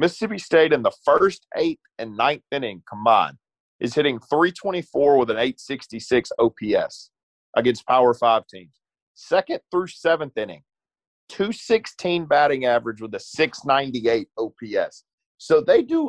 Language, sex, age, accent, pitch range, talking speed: English, male, 40-59, American, 120-180 Hz, 130 wpm